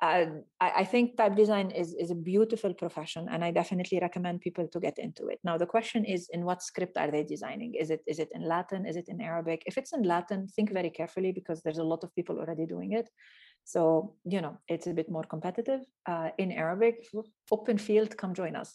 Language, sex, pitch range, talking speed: English, female, 170-220 Hz, 230 wpm